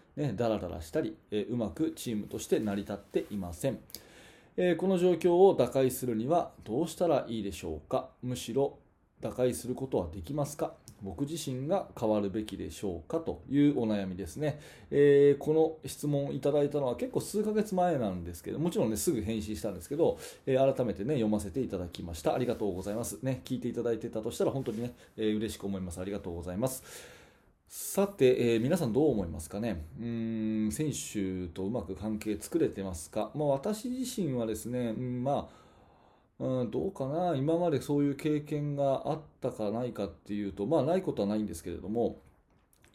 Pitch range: 105-150 Hz